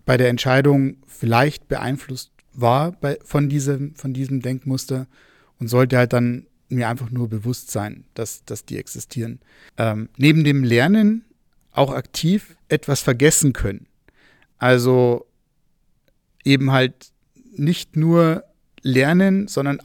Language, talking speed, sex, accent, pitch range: German, 125 wpm, male, German, 130-155 Hz